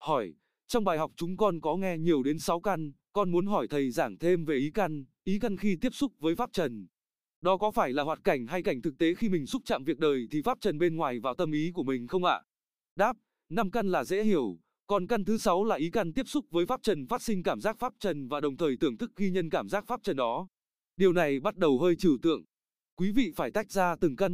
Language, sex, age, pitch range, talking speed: Vietnamese, male, 20-39, 165-215 Hz, 265 wpm